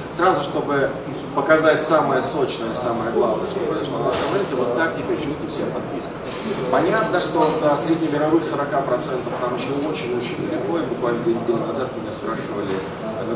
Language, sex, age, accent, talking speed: Russian, male, 30-49, native, 160 wpm